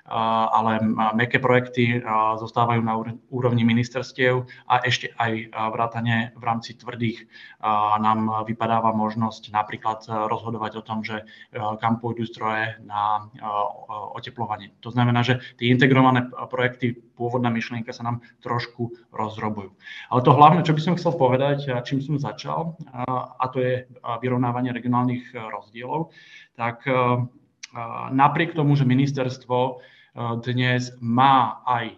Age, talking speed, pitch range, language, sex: 20-39, 120 wpm, 115-125 Hz, Slovak, male